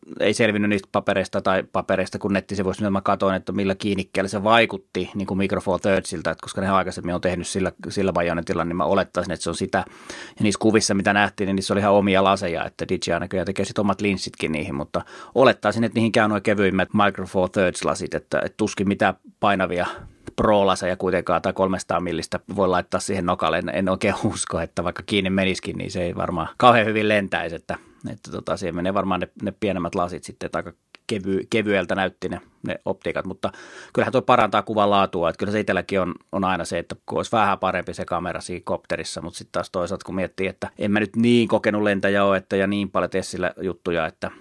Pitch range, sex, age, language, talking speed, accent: 90-105 Hz, male, 30-49, Finnish, 205 wpm, native